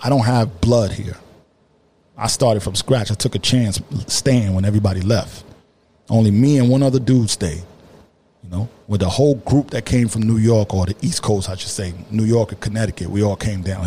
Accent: American